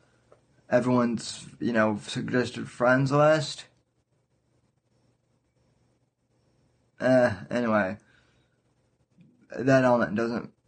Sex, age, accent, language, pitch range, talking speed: male, 20-39, American, English, 115-135 Hz, 60 wpm